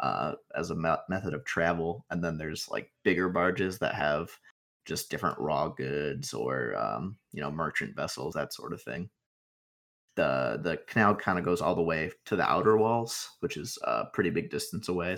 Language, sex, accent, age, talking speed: English, male, American, 20-39, 200 wpm